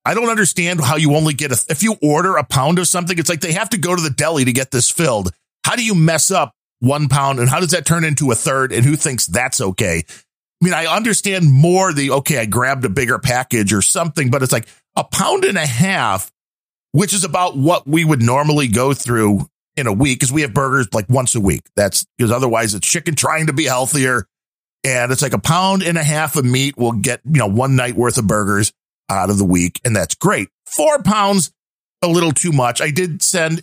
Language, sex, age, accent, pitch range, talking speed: English, male, 50-69, American, 115-155 Hz, 240 wpm